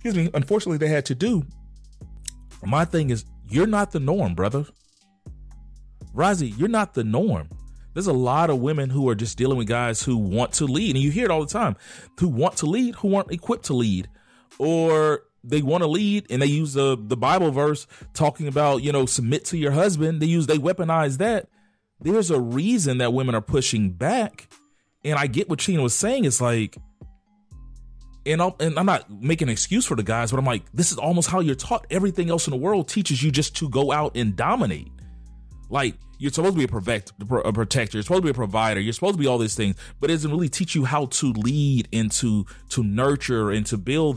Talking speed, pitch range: 220 wpm, 115-160 Hz